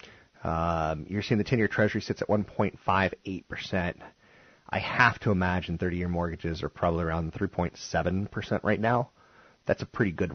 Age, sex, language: 30-49, male, English